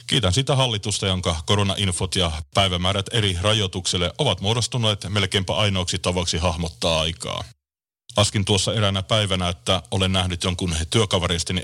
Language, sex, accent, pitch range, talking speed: Finnish, male, native, 90-110 Hz, 130 wpm